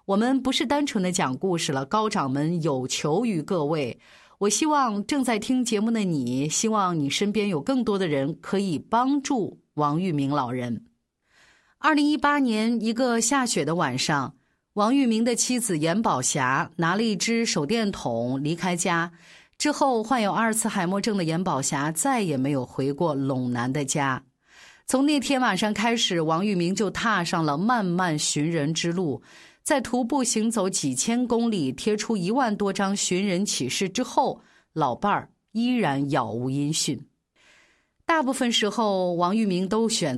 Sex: female